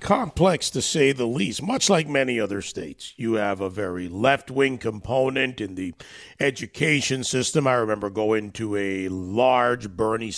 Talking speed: 155 wpm